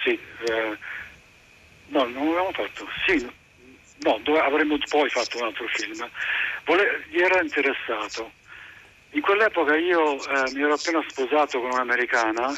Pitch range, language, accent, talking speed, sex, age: 125-175 Hz, Italian, native, 140 wpm, male, 50-69